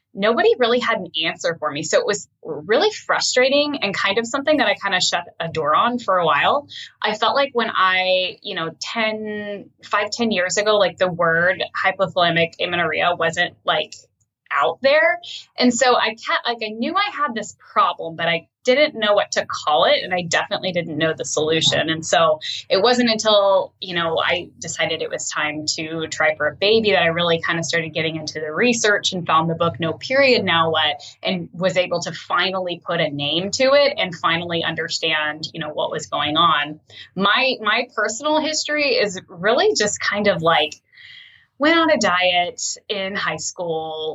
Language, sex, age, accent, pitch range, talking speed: English, female, 10-29, American, 165-240 Hz, 195 wpm